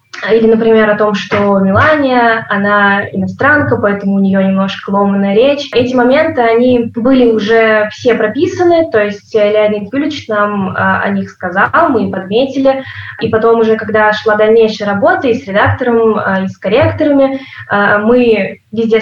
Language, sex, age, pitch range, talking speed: Russian, female, 20-39, 205-255 Hz, 150 wpm